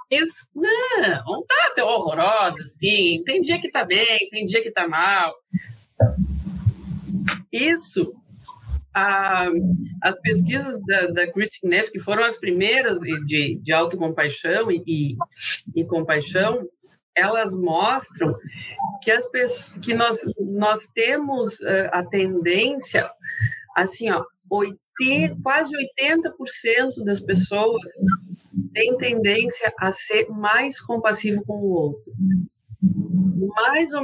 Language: Portuguese